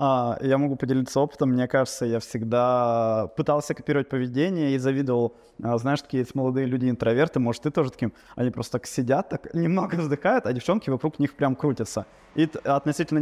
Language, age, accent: Russian, 20-39, native